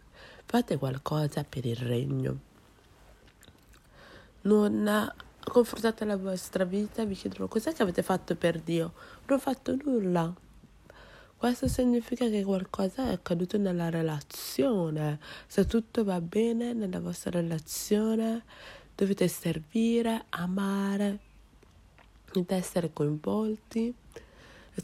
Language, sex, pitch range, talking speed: English, female, 175-215 Hz, 105 wpm